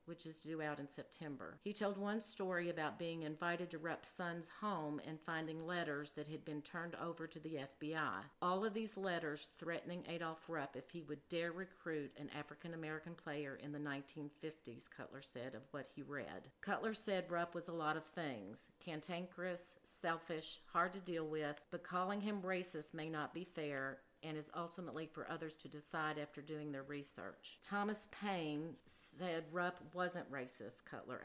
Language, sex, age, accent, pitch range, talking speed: English, female, 50-69, American, 150-175 Hz, 175 wpm